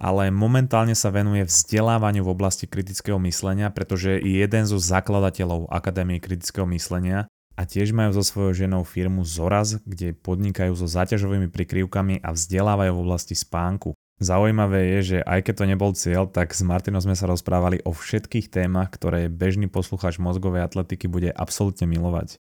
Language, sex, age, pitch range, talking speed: Slovak, male, 20-39, 90-100 Hz, 160 wpm